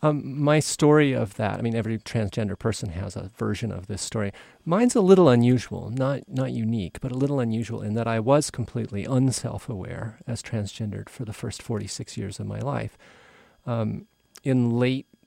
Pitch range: 105-130 Hz